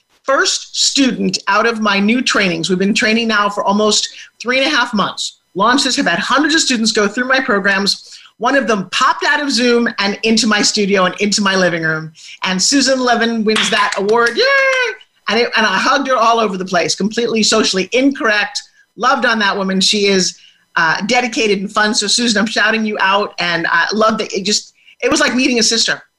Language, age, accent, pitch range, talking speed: English, 40-59, American, 190-240 Hz, 210 wpm